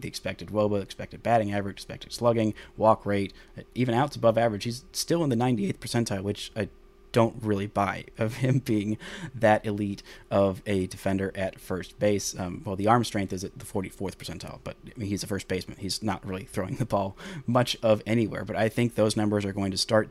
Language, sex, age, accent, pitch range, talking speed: English, male, 30-49, American, 100-115 Hz, 205 wpm